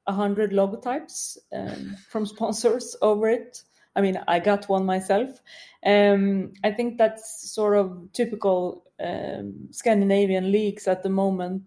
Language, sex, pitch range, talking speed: English, female, 195-220 Hz, 135 wpm